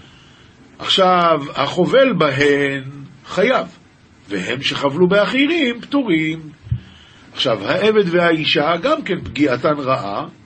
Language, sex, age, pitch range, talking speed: Hebrew, male, 50-69, 130-180 Hz, 85 wpm